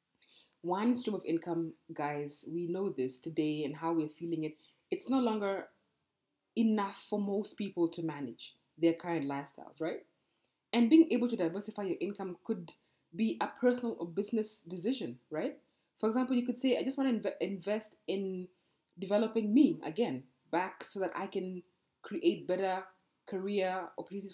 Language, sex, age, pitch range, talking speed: English, female, 20-39, 165-225 Hz, 160 wpm